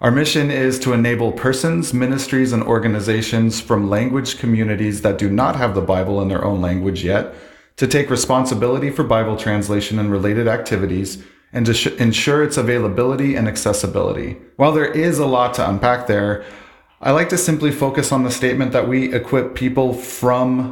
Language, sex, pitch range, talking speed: English, male, 105-125 Hz, 175 wpm